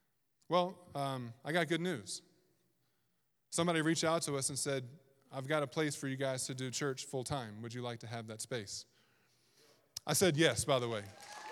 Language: English